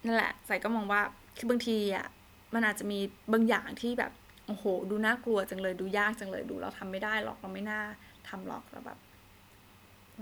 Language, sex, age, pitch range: Thai, female, 20-39, 190-230 Hz